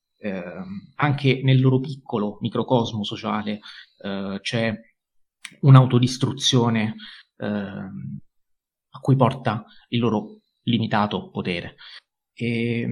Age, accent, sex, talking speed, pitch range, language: 30-49, native, male, 85 wpm, 105-130 Hz, Italian